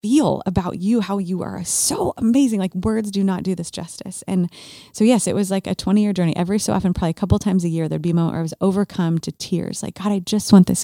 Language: English